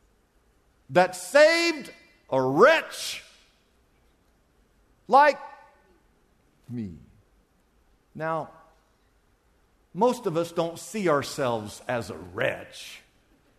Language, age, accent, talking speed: English, 50-69, American, 70 wpm